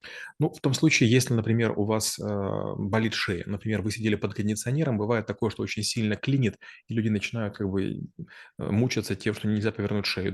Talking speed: 185 wpm